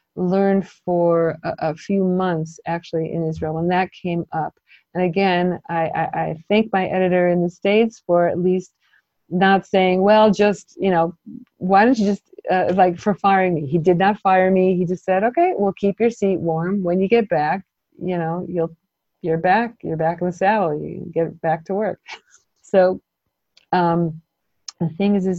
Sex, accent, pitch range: female, American, 170-195 Hz